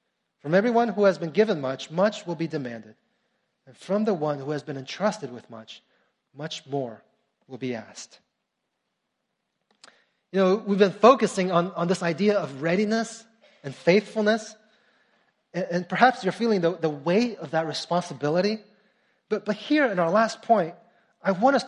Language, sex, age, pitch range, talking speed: English, male, 30-49, 165-225 Hz, 165 wpm